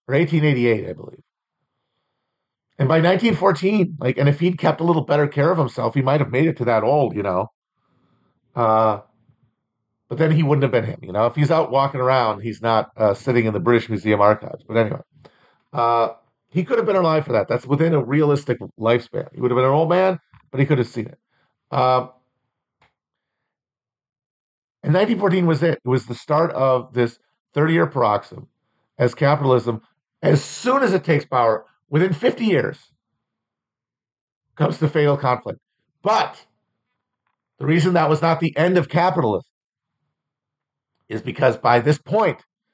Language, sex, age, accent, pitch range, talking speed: English, male, 40-59, American, 125-165 Hz, 175 wpm